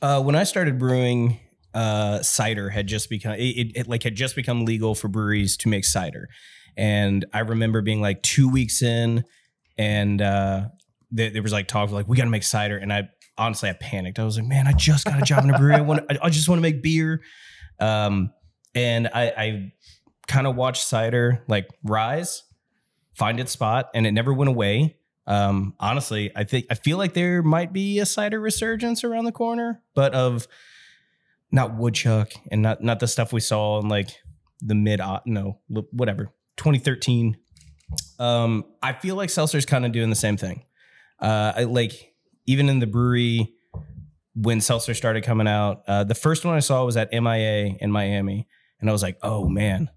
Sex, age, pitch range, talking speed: male, 20-39, 105-130 Hz, 195 wpm